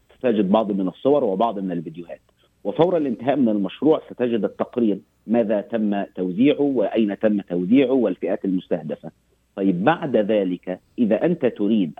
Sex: male